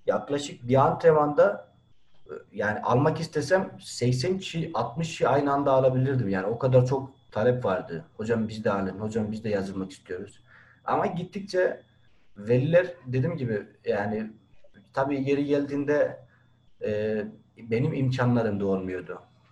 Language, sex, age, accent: English, male, 40-59, Turkish